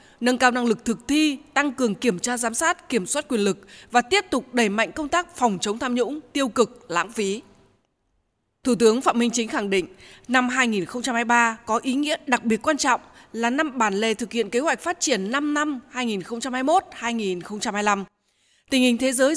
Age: 20-39